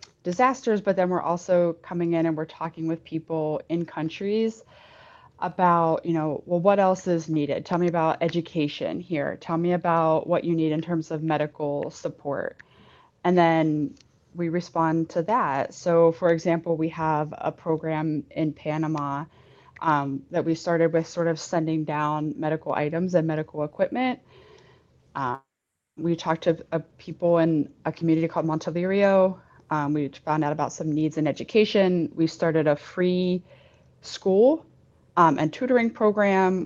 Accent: American